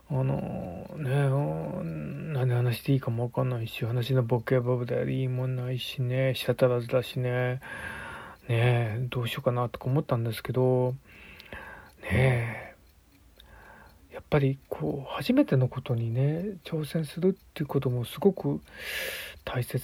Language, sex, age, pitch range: Japanese, male, 40-59, 115-135 Hz